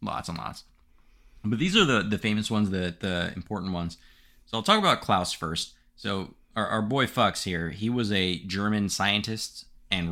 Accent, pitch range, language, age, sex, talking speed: American, 85-105 Hz, English, 20-39, male, 190 wpm